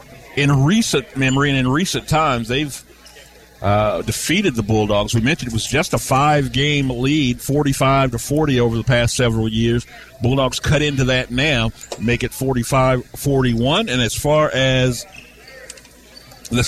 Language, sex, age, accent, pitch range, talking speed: English, male, 50-69, American, 120-150 Hz, 145 wpm